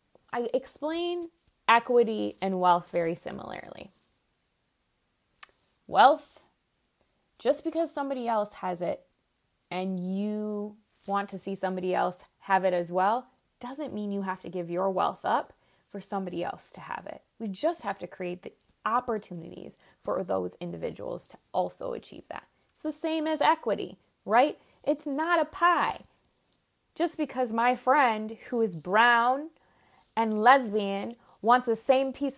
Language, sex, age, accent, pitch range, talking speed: English, female, 20-39, American, 185-245 Hz, 145 wpm